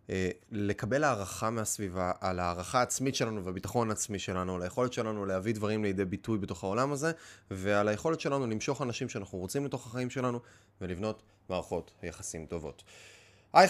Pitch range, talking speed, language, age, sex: 95-130 Hz, 155 wpm, Hebrew, 20-39, male